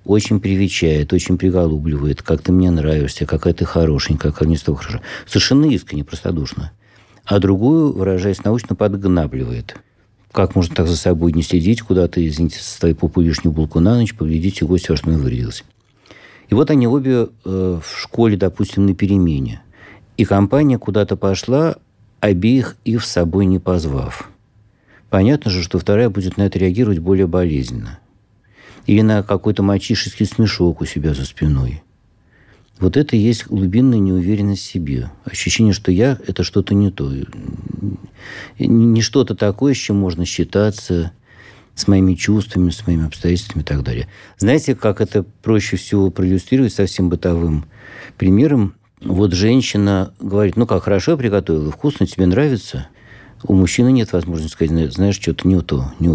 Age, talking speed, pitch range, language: 50-69, 155 wpm, 85-105 Hz, Russian